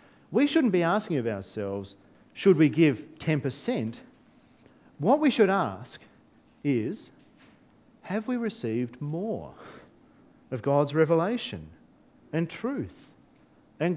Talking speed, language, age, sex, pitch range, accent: 105 wpm, English, 40-59, male, 140-205 Hz, Australian